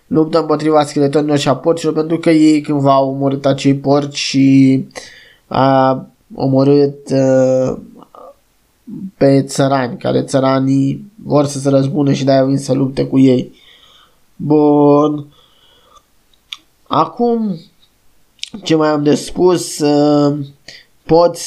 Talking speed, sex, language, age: 115 wpm, male, Romanian, 20-39